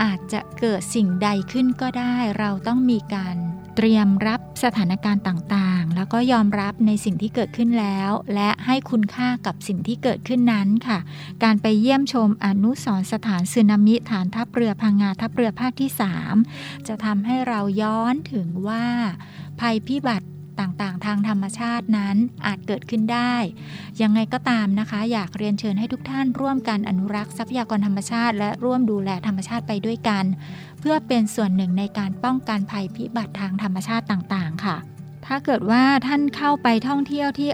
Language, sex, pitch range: Thai, female, 195-235 Hz